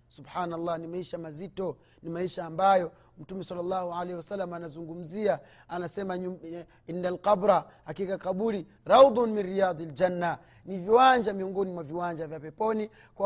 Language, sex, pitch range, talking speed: Swahili, male, 170-225 Hz, 125 wpm